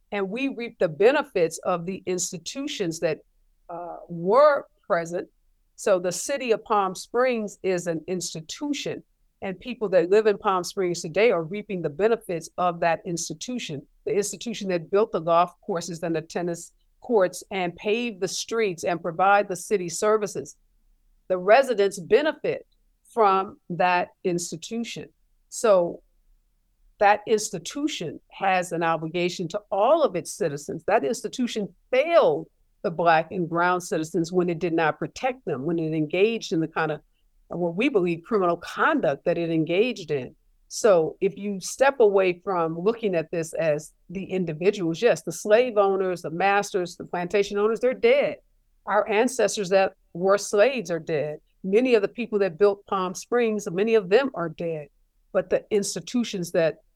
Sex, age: female, 50-69